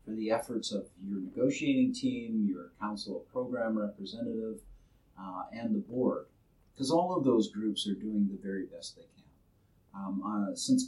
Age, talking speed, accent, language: 50-69, 170 wpm, American, English